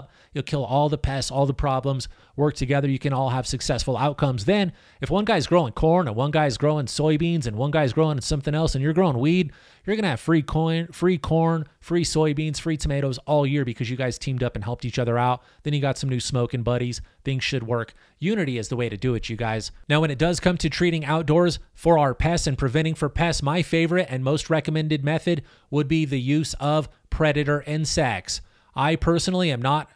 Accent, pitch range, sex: American, 130-160 Hz, male